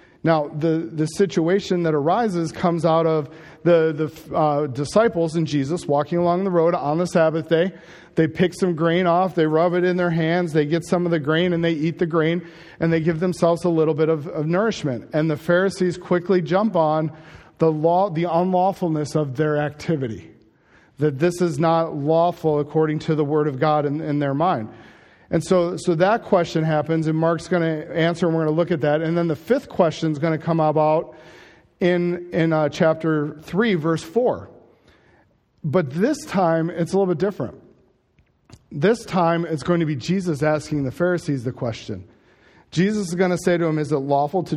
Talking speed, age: 200 wpm, 40-59